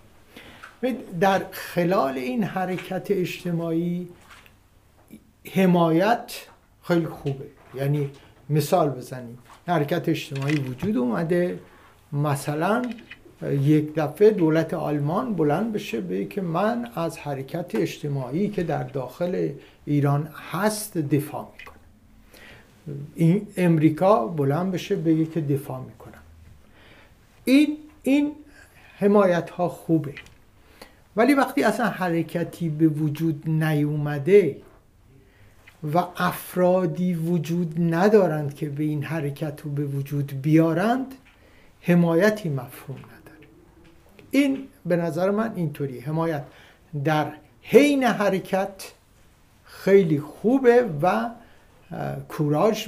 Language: Persian